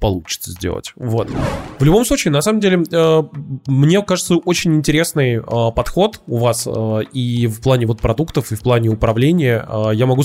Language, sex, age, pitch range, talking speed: English, male, 20-39, 110-140 Hz, 160 wpm